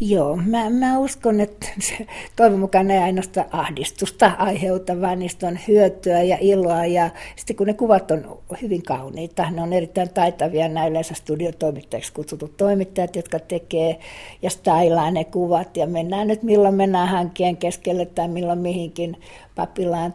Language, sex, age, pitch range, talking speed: Finnish, female, 60-79, 170-200 Hz, 150 wpm